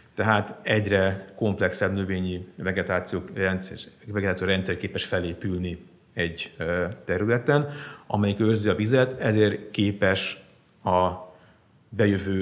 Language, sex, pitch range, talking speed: Hungarian, male, 90-105 Hz, 90 wpm